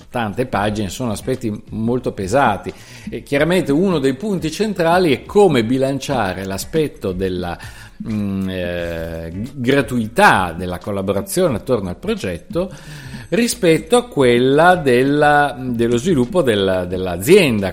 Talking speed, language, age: 100 wpm, Italian, 50-69